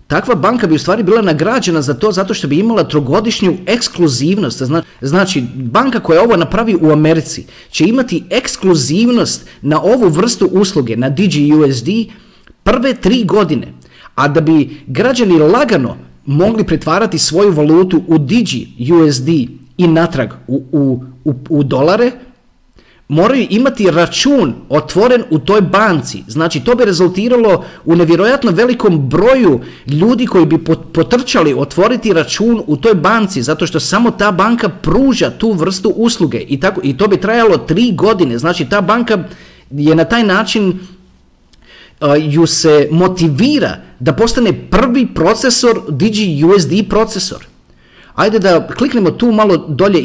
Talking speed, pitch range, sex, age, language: 140 wpm, 155-220 Hz, male, 40-59, Croatian